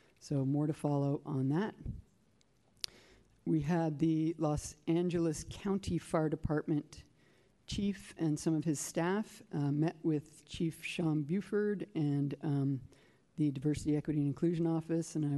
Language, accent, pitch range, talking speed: English, American, 145-170 Hz, 140 wpm